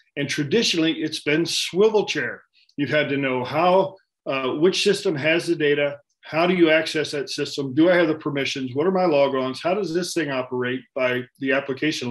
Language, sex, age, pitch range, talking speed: English, male, 40-59, 140-185 Hz, 200 wpm